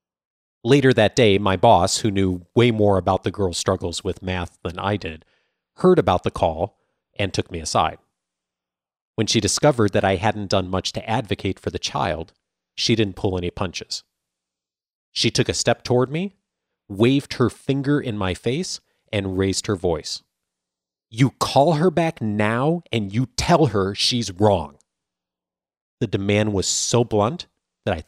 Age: 30-49